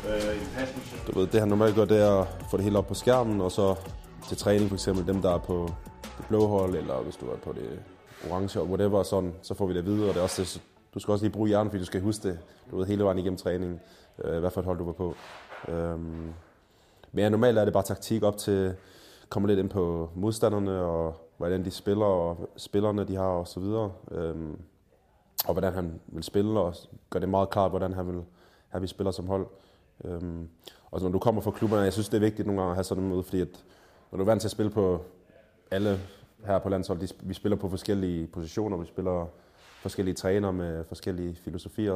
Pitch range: 90-105 Hz